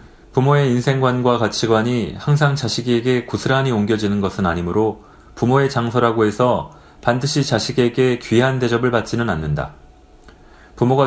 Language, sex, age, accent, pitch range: Korean, male, 30-49, native, 100-125 Hz